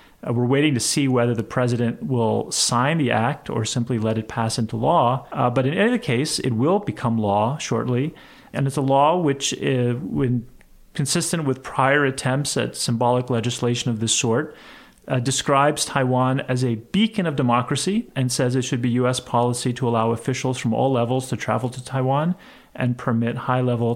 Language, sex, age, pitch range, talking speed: English, male, 30-49, 115-135 Hz, 185 wpm